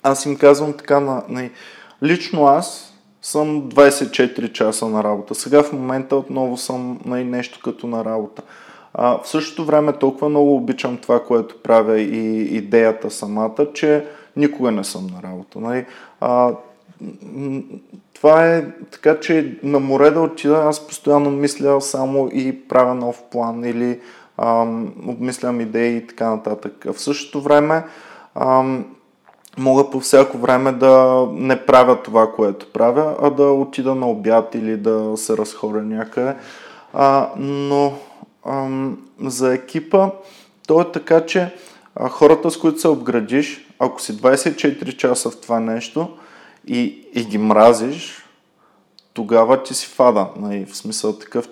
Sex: male